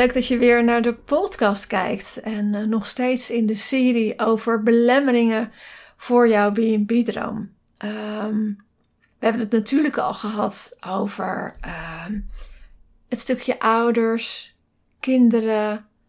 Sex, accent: female, Dutch